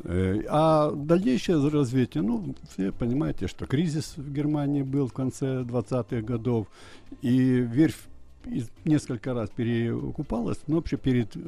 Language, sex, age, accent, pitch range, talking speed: Russian, male, 60-79, native, 95-140 Hz, 120 wpm